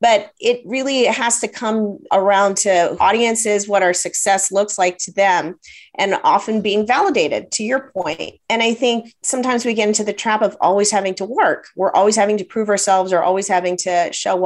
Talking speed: 200 wpm